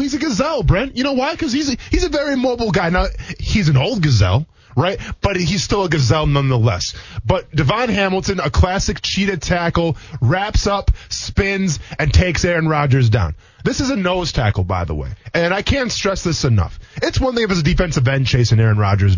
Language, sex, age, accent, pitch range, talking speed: English, male, 20-39, American, 120-190 Hz, 205 wpm